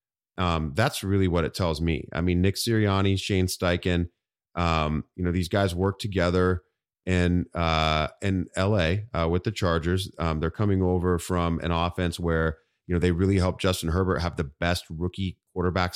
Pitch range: 80-95 Hz